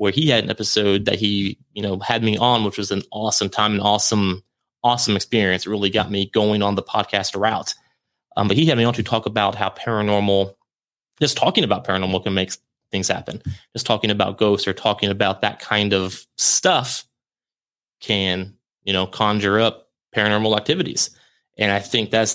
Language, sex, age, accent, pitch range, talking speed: English, male, 30-49, American, 100-120 Hz, 190 wpm